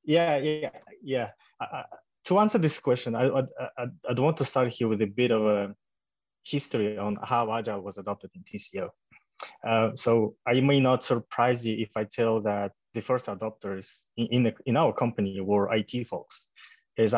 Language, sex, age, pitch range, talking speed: English, male, 20-39, 105-130 Hz, 180 wpm